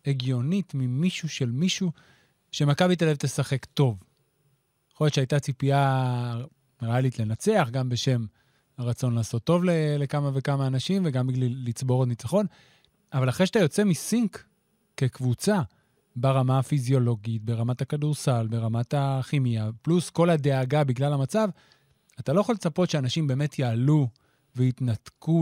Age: 30-49